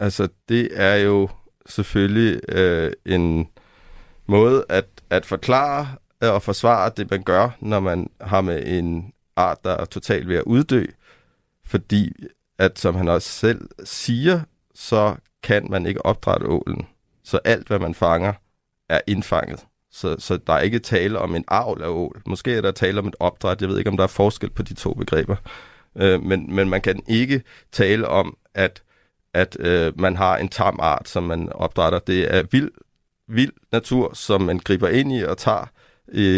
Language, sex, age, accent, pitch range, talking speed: Danish, male, 30-49, native, 95-115 Hz, 180 wpm